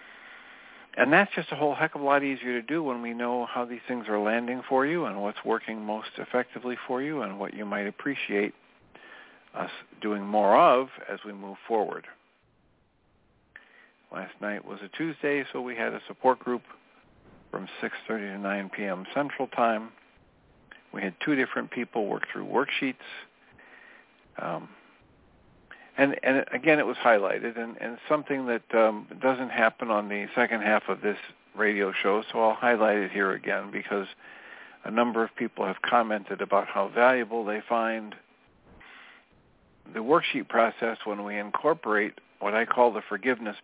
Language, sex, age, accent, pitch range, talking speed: English, male, 50-69, American, 105-130 Hz, 160 wpm